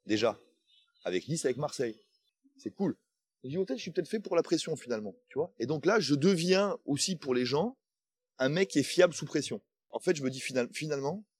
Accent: French